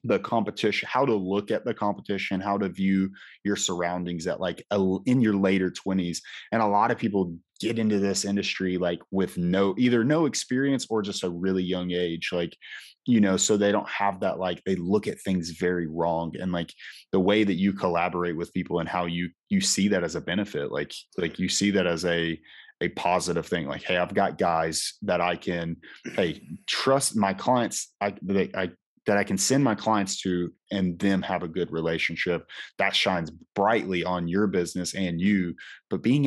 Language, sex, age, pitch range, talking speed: English, male, 30-49, 85-100 Hz, 200 wpm